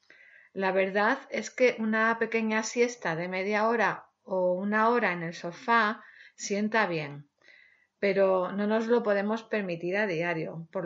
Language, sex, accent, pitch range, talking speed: Spanish, female, Spanish, 185-235 Hz, 150 wpm